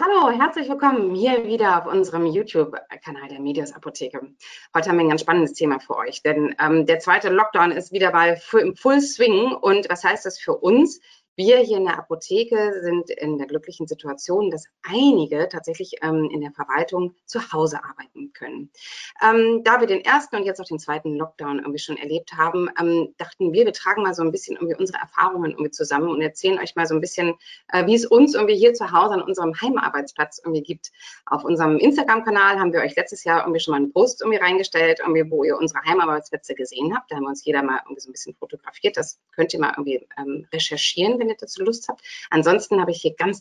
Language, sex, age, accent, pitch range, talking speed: German, female, 30-49, German, 150-225 Hz, 215 wpm